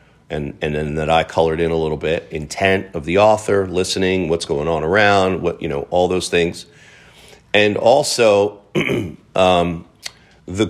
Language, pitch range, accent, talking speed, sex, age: English, 80-100 Hz, American, 165 wpm, male, 40-59